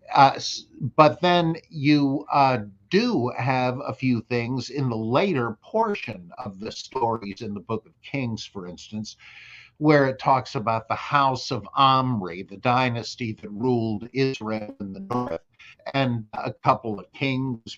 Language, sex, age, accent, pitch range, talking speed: English, male, 50-69, American, 115-145 Hz, 150 wpm